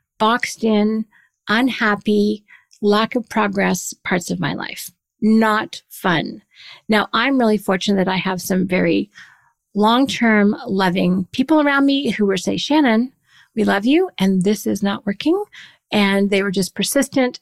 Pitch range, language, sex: 195-240 Hz, English, female